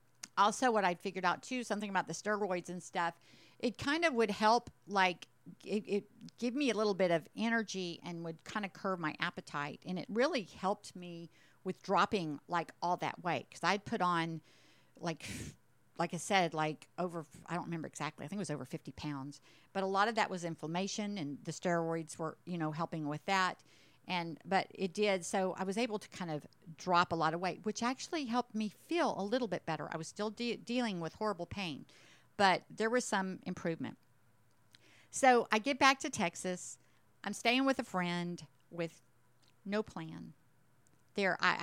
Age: 50-69